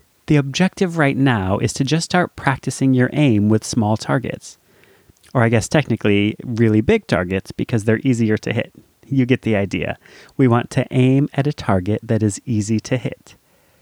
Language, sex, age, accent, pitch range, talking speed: English, male, 30-49, American, 110-145 Hz, 180 wpm